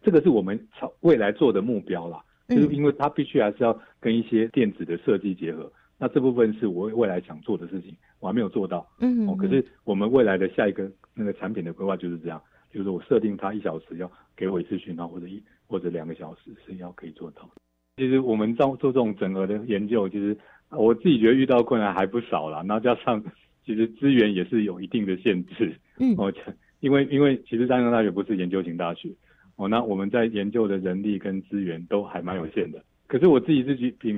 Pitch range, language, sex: 95-120 Hz, Chinese, male